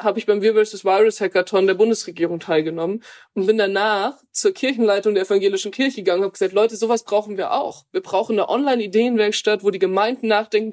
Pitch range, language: 190-225 Hz, German